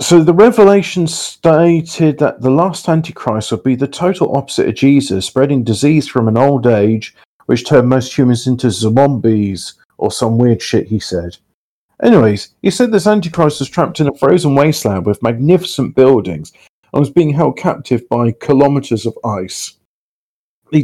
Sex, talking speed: male, 165 wpm